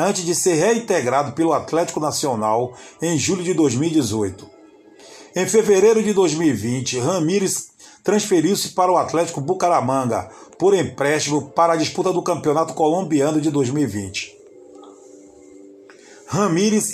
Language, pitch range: Portuguese, 140-185 Hz